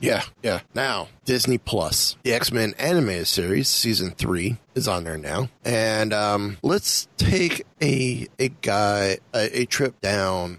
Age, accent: 30-49, American